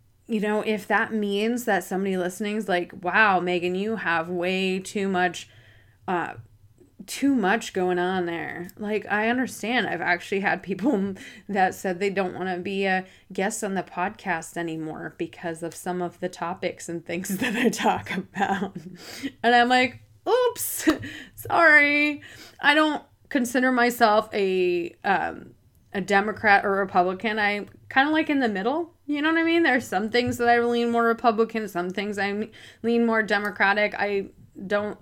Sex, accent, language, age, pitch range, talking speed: female, American, English, 20-39, 185-245 Hz, 165 wpm